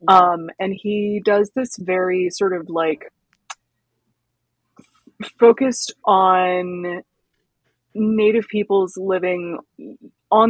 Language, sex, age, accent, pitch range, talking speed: English, female, 20-39, American, 165-200 Hz, 85 wpm